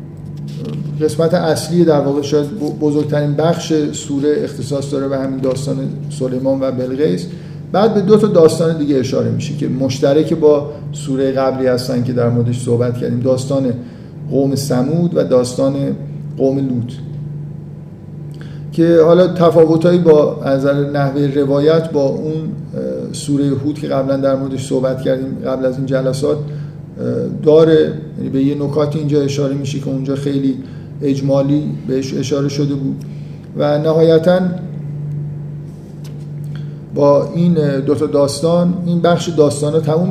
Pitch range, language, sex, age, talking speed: 140-160 Hz, Persian, male, 50-69, 135 wpm